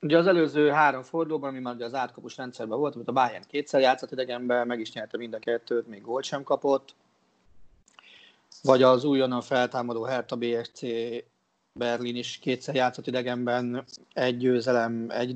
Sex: male